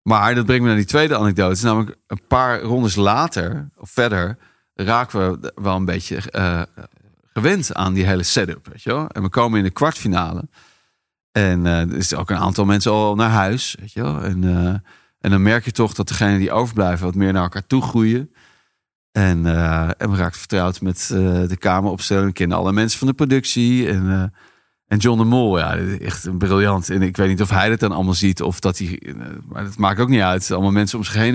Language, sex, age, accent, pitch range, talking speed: Dutch, male, 40-59, Dutch, 95-125 Hz, 225 wpm